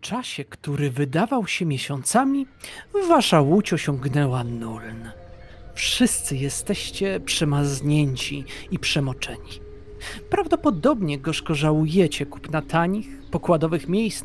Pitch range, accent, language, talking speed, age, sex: 140-210 Hz, native, Polish, 95 wpm, 40-59, male